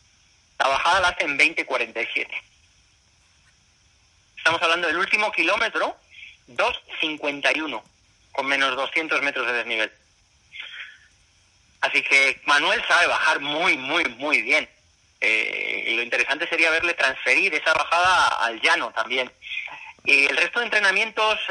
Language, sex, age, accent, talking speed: Spanish, male, 30-49, Spanish, 120 wpm